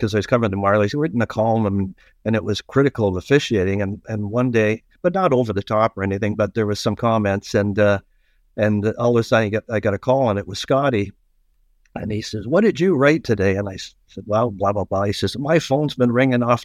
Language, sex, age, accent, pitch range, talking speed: English, male, 50-69, American, 105-125 Hz, 255 wpm